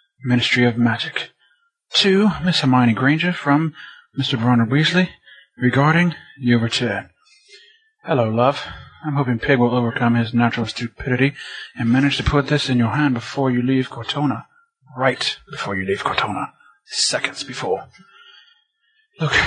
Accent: American